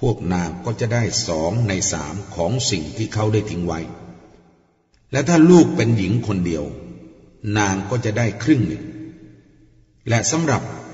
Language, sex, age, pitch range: Thai, male, 60-79, 95-120 Hz